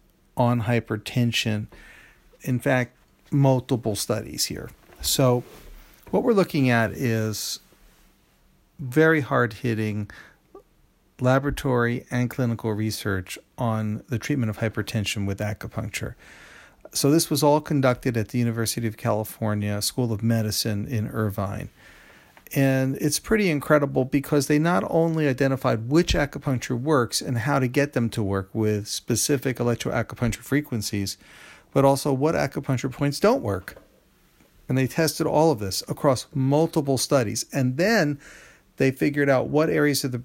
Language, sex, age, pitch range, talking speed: English, male, 40-59, 110-140 Hz, 135 wpm